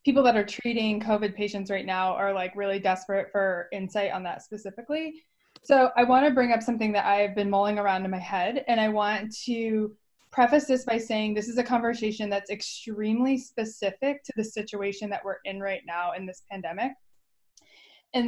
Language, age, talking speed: English, 20-39, 195 wpm